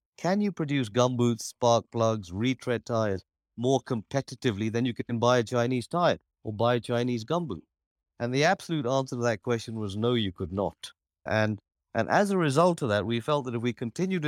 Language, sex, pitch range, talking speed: English, male, 100-120 Hz, 200 wpm